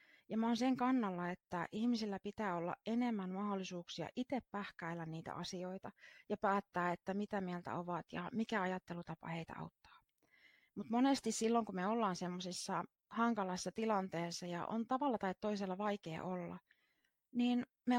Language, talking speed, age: Finnish, 145 wpm, 20-39